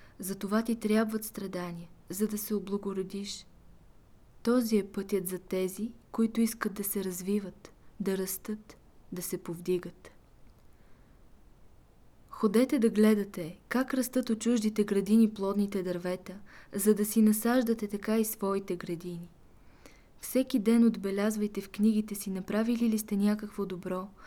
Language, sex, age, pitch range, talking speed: Bulgarian, female, 20-39, 195-220 Hz, 130 wpm